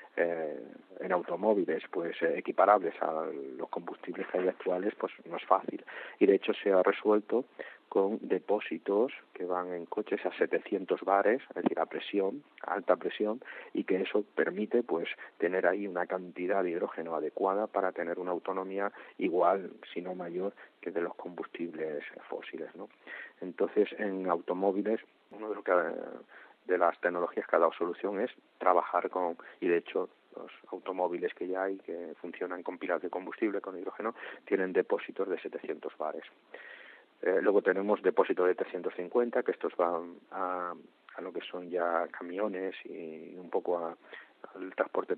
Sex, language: male, Spanish